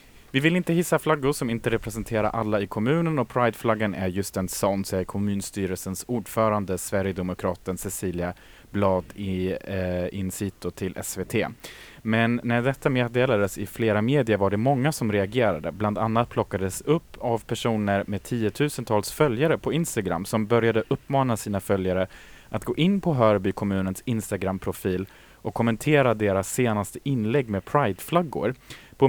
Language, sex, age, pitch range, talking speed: Swedish, male, 30-49, 95-125 Hz, 150 wpm